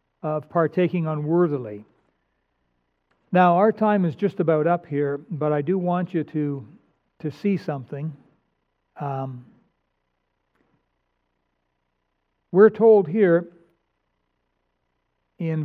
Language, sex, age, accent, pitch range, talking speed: English, male, 60-79, American, 140-190 Hz, 95 wpm